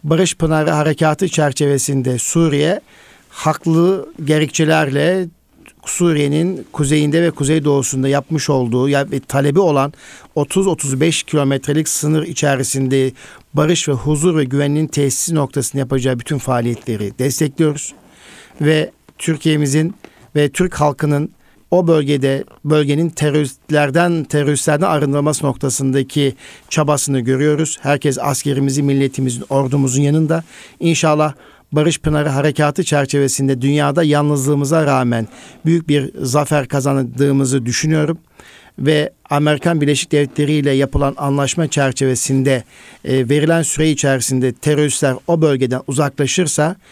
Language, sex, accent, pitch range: Turkish, male, native, 135-155 Hz